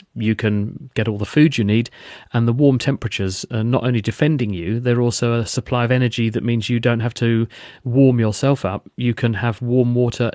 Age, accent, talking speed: 40-59, British, 215 wpm